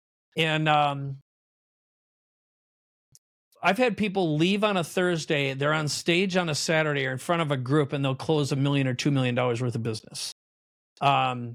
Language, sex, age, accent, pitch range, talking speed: English, male, 40-59, American, 140-185 Hz, 170 wpm